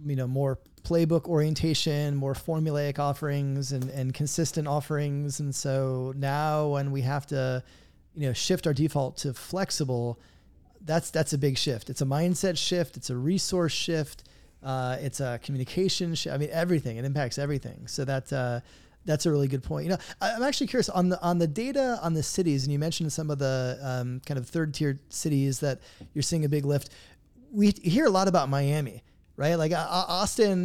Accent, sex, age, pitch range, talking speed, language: American, male, 30-49, 140-175 Hz, 195 wpm, English